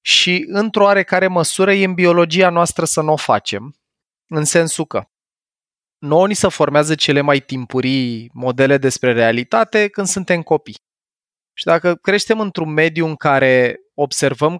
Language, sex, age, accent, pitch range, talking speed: Romanian, male, 20-39, native, 125-155 Hz, 150 wpm